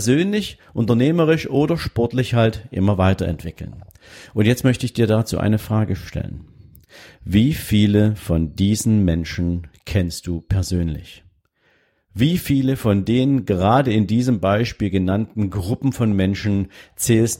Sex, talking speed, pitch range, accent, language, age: male, 130 wpm, 95-120 Hz, German, German, 50-69